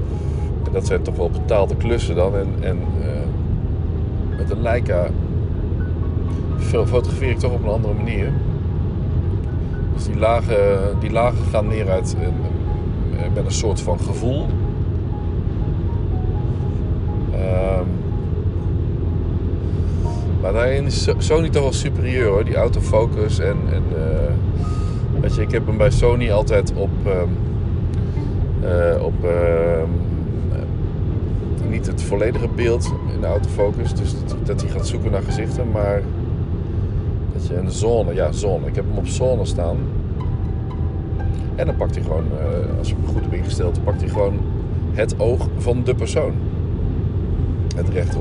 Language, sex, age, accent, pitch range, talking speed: Dutch, male, 50-69, Dutch, 85-105 Hz, 135 wpm